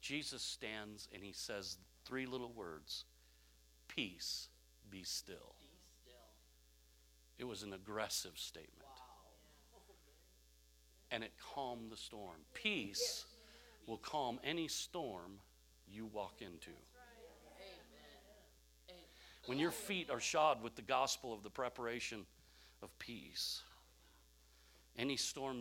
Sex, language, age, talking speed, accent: male, English, 50-69, 105 wpm, American